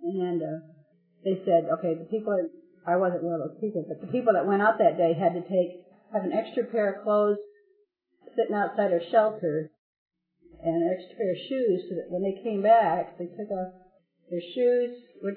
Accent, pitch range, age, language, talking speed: American, 165-200 Hz, 50-69, English, 205 wpm